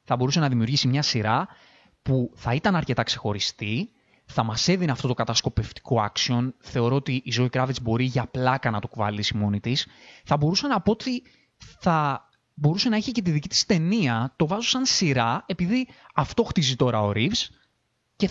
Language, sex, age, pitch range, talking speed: Greek, male, 20-39, 115-180 Hz, 185 wpm